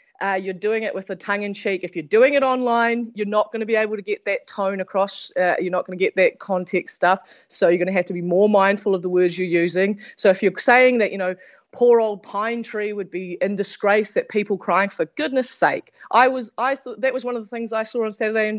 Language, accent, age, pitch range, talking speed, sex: English, Australian, 30-49, 190-235 Hz, 265 wpm, female